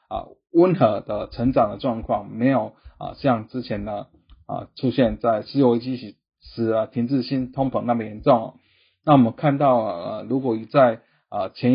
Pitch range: 115-135 Hz